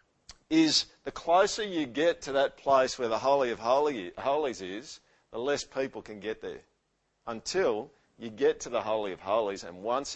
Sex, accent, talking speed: male, Australian, 175 wpm